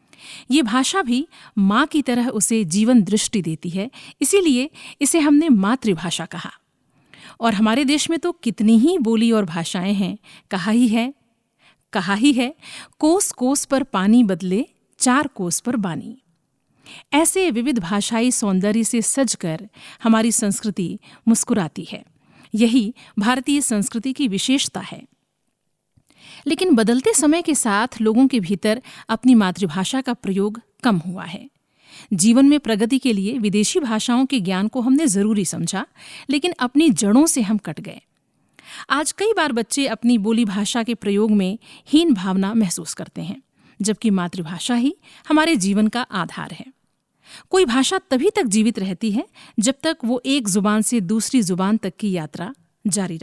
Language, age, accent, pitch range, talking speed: Hindi, 50-69, native, 205-265 Hz, 150 wpm